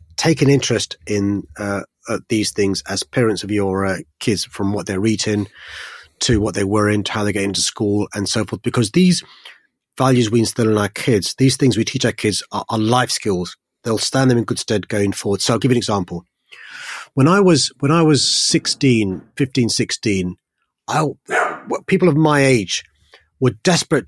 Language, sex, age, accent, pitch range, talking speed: English, male, 30-49, British, 105-130 Hz, 200 wpm